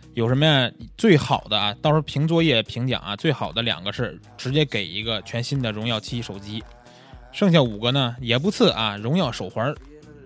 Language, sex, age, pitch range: Chinese, male, 20-39, 115-160 Hz